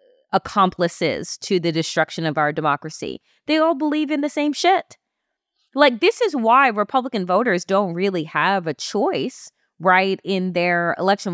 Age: 30-49